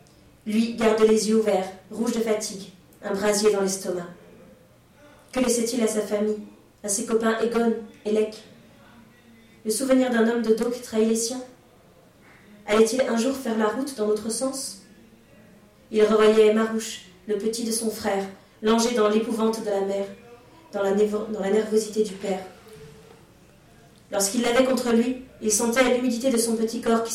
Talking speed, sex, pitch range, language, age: 165 wpm, female, 200-230 Hz, French, 30-49